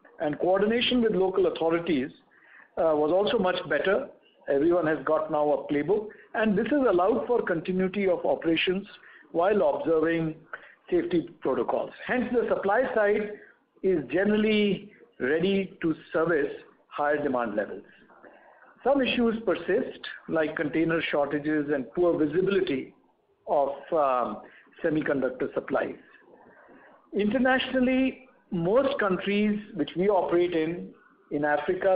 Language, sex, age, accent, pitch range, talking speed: English, male, 60-79, Indian, 150-215 Hz, 115 wpm